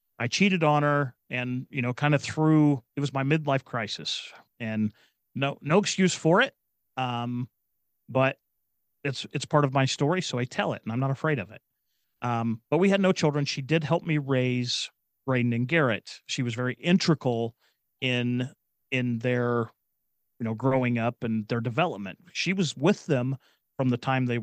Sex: male